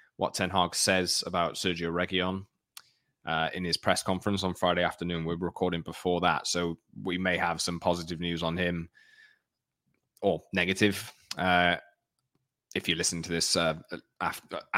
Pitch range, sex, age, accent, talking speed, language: 85-105 Hz, male, 20-39, British, 160 wpm, English